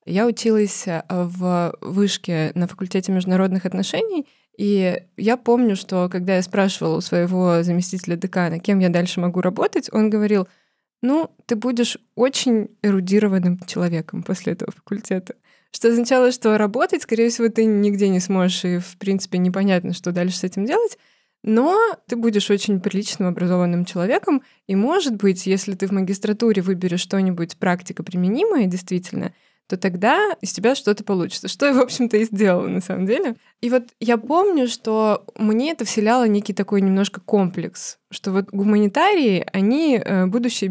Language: Russian